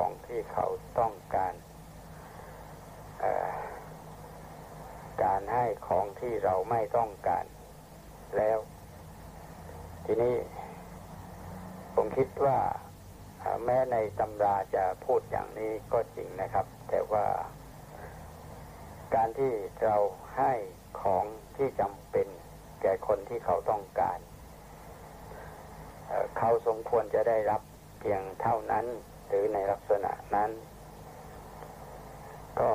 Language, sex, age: Thai, male, 60-79